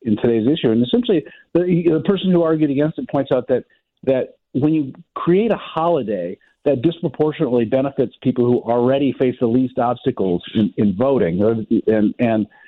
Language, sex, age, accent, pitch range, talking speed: English, male, 50-69, American, 110-150 Hz, 170 wpm